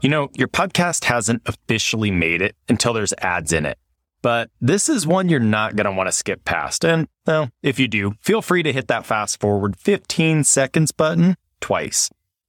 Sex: male